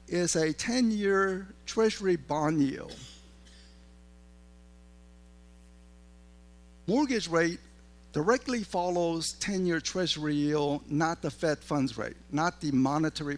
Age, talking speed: 50-69, 95 wpm